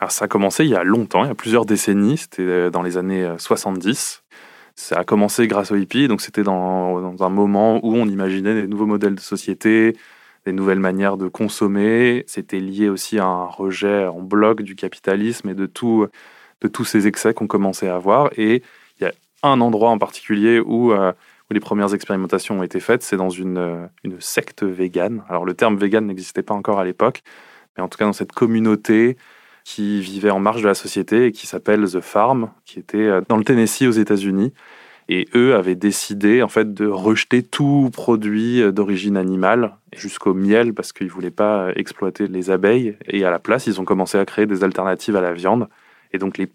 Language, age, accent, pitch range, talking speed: French, 20-39, French, 95-110 Hz, 205 wpm